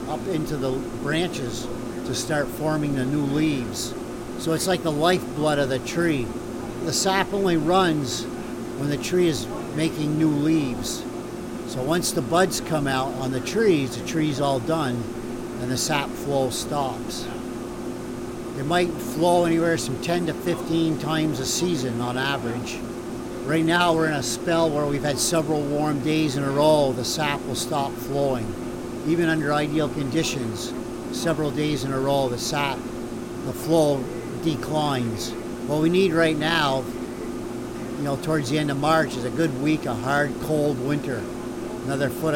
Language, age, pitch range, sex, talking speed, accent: English, 50-69, 120-160 Hz, male, 165 wpm, American